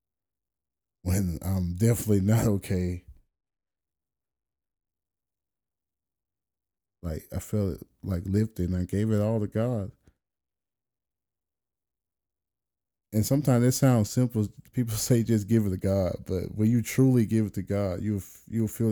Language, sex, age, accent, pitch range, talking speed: English, male, 20-39, American, 85-105 Hz, 130 wpm